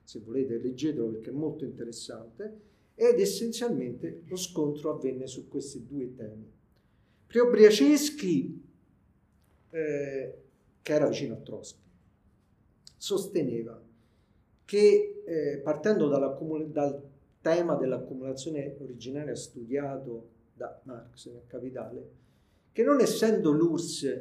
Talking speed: 95 wpm